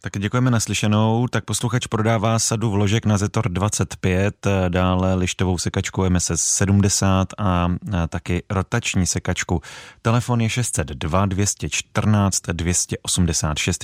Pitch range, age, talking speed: 85-100 Hz, 30-49, 110 wpm